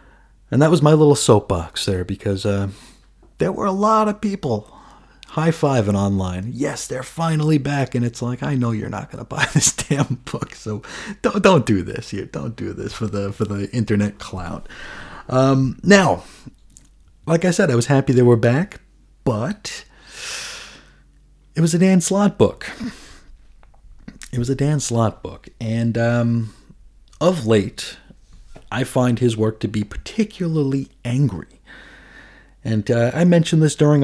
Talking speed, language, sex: 160 wpm, English, male